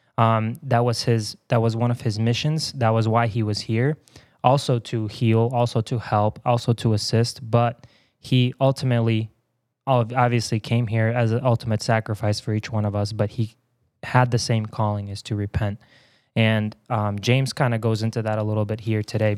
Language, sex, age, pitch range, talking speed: English, male, 20-39, 110-120 Hz, 190 wpm